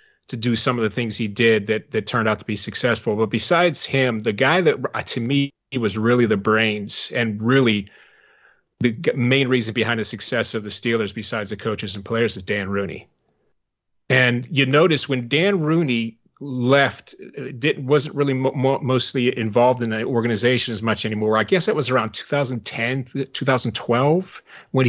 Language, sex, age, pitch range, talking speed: English, male, 30-49, 115-145 Hz, 185 wpm